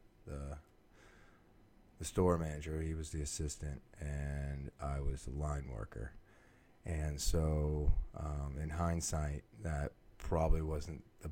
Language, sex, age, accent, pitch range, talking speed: English, male, 30-49, American, 75-85 Hz, 115 wpm